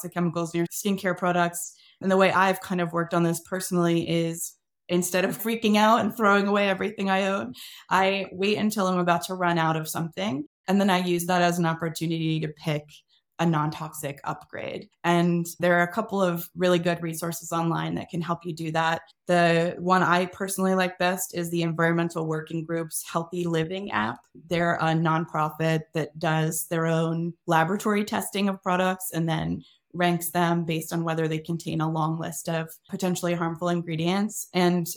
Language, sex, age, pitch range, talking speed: English, female, 20-39, 165-185 Hz, 185 wpm